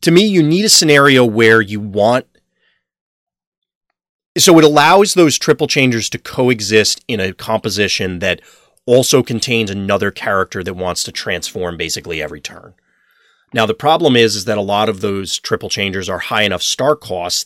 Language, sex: English, male